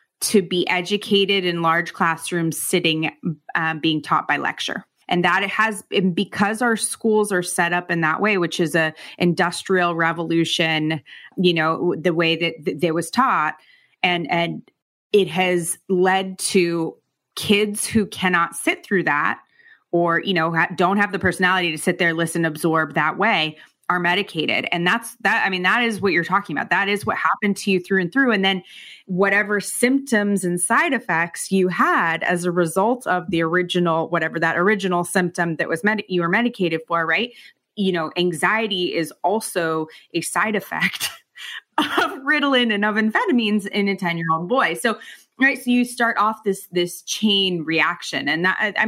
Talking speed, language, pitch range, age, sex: 180 wpm, English, 170-205 Hz, 20-39, female